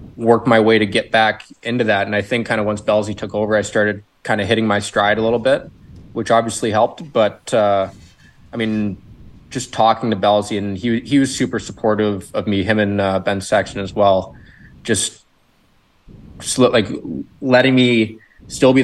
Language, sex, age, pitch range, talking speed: English, male, 20-39, 100-110 Hz, 190 wpm